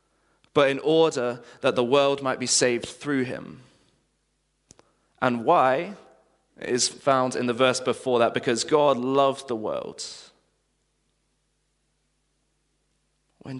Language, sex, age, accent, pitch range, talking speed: English, male, 20-39, British, 115-145 Hz, 115 wpm